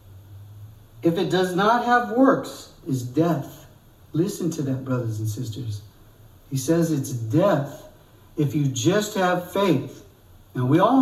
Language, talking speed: English, 140 wpm